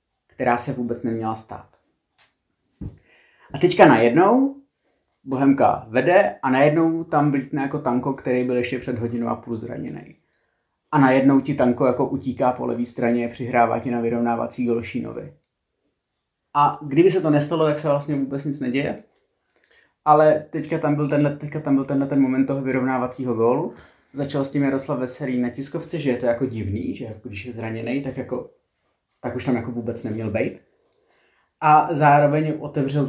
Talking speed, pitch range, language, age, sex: 165 wpm, 125-145 Hz, Czech, 30-49, male